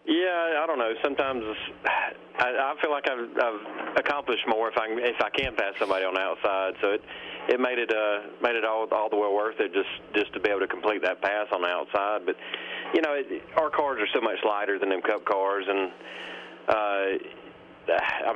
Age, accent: 40-59, American